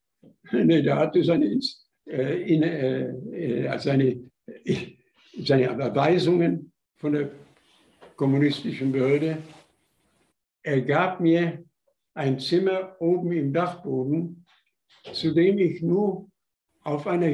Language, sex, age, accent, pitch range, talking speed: German, male, 60-79, German, 145-185 Hz, 85 wpm